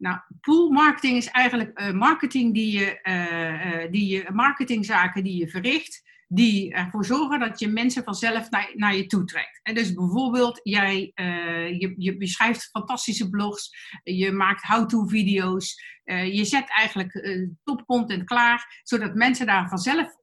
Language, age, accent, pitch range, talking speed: Dutch, 50-69, Dutch, 185-240 Hz, 155 wpm